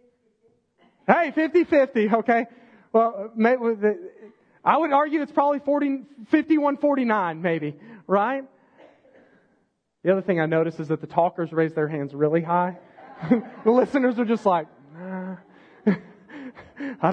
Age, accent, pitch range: 30-49, American, 170-235 Hz